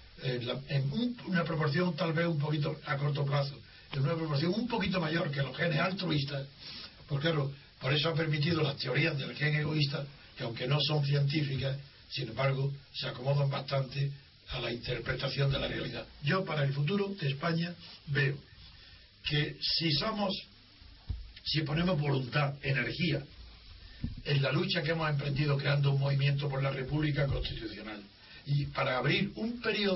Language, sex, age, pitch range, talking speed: Spanish, male, 60-79, 140-175 Hz, 165 wpm